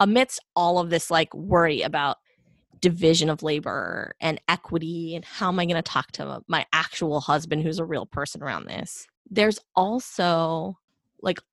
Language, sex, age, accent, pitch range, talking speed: English, female, 20-39, American, 155-185 Hz, 165 wpm